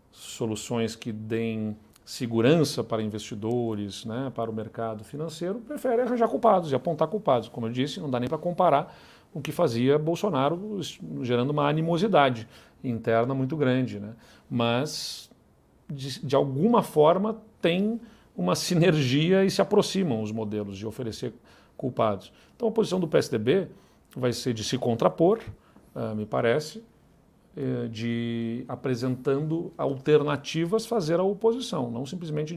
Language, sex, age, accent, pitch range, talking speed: Portuguese, male, 40-59, Brazilian, 115-170 Hz, 135 wpm